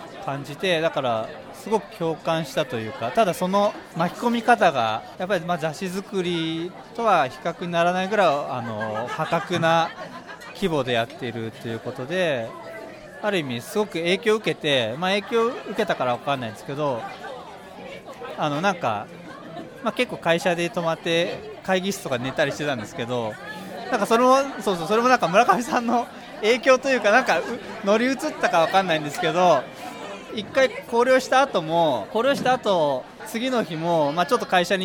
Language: Japanese